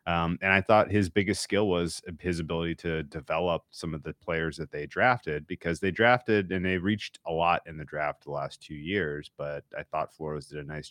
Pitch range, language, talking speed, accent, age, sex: 75-95 Hz, English, 225 wpm, American, 30-49, male